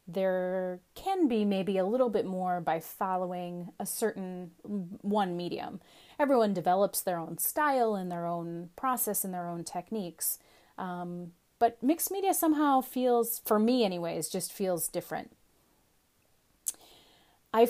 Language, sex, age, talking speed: English, female, 30-49, 135 wpm